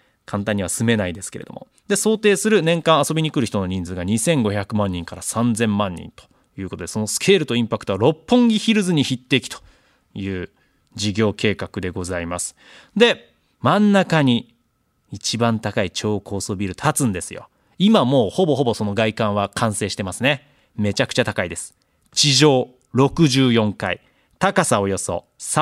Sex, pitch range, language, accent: male, 105-175 Hz, Japanese, native